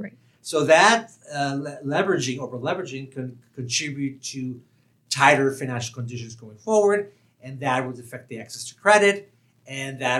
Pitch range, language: 120-155 Hz, English